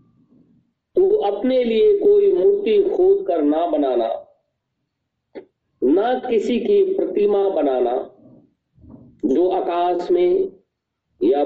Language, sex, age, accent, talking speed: Hindi, male, 50-69, native, 90 wpm